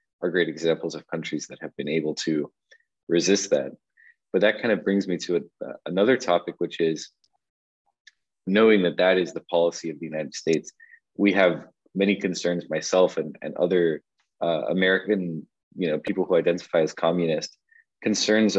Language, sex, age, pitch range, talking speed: English, male, 20-39, 85-100 Hz, 170 wpm